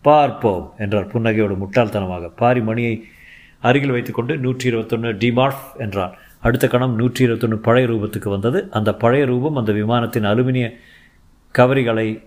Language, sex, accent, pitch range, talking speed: Tamil, male, native, 105-130 Hz, 135 wpm